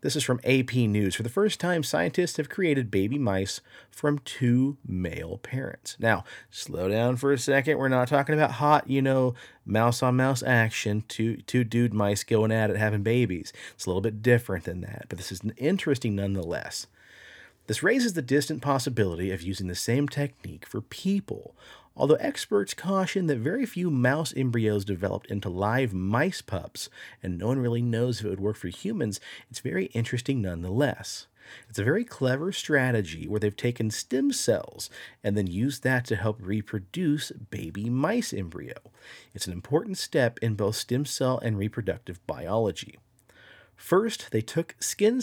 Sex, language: male, English